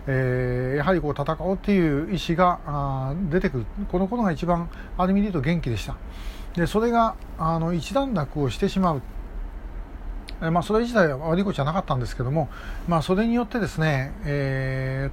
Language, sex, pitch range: Japanese, male, 135-180 Hz